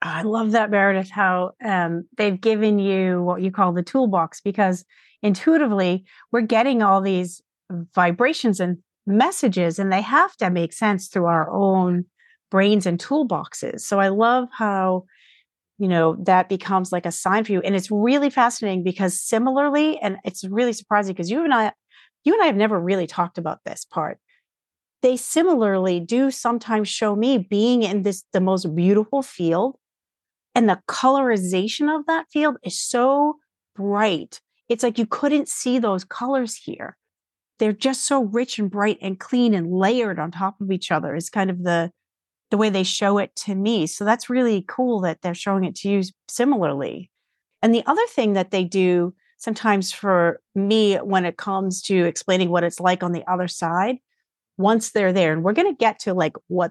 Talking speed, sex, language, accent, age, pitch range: 180 wpm, female, English, American, 40-59, 185-235 Hz